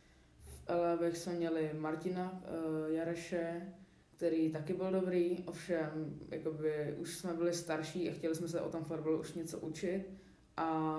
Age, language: 20-39, Czech